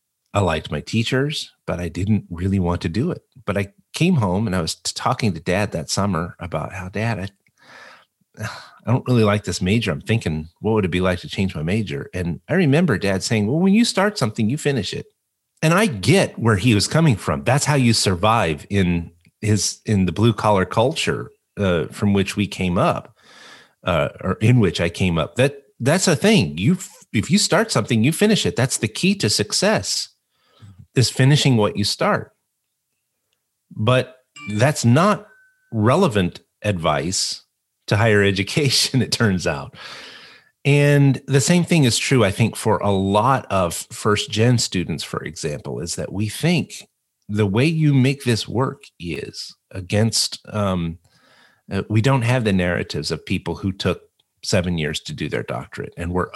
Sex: male